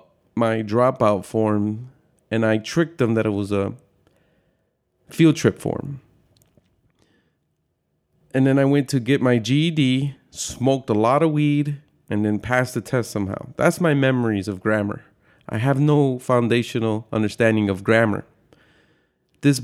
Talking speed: 140 wpm